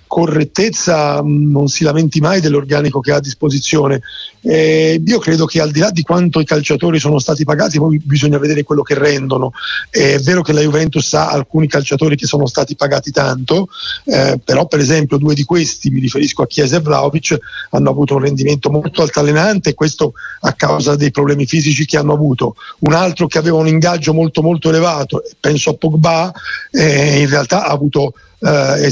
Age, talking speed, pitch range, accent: 40-59, 190 wpm, 145-165 Hz, native